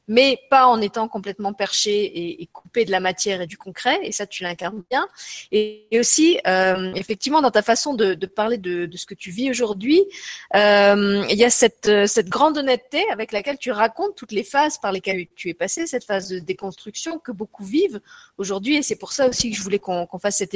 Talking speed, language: 220 wpm, French